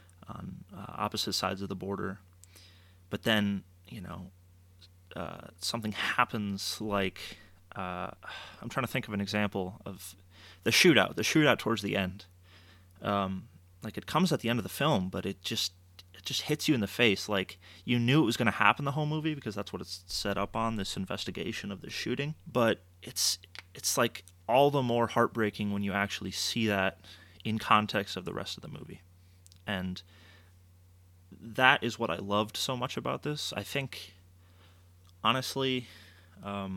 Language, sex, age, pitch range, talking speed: English, male, 30-49, 90-115 Hz, 175 wpm